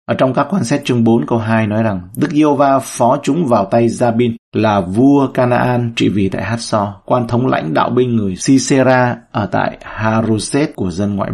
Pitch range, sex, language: 105-130 Hz, male, Vietnamese